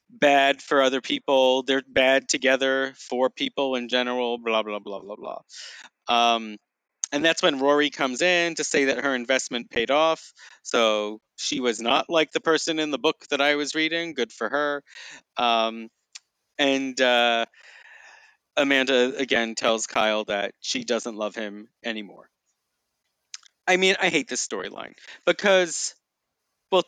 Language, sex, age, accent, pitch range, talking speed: English, male, 30-49, American, 130-165 Hz, 150 wpm